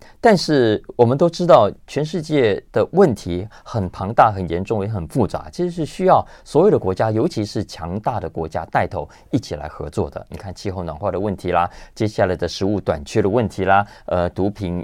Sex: male